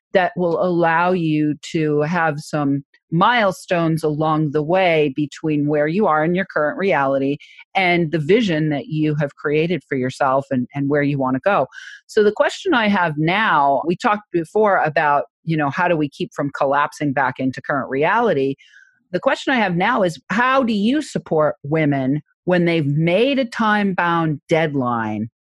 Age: 40-59